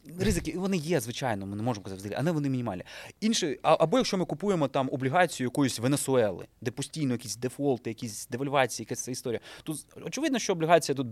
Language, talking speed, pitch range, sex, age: Ukrainian, 185 wpm, 115-160 Hz, male, 20-39